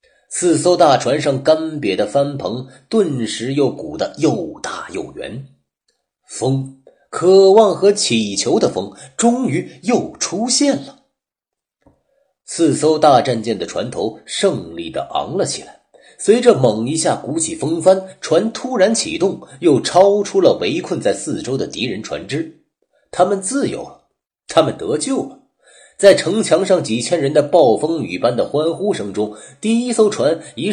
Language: Chinese